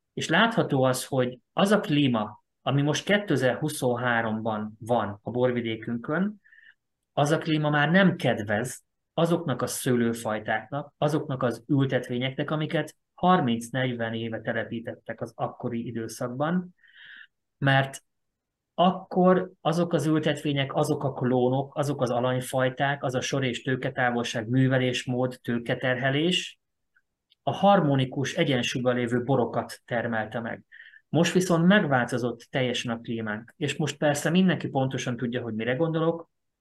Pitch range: 120-145 Hz